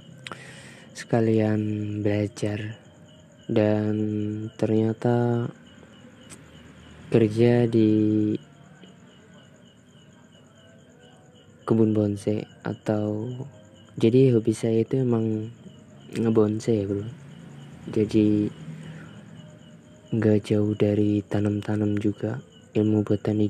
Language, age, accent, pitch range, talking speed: Indonesian, 20-39, native, 105-120 Hz, 65 wpm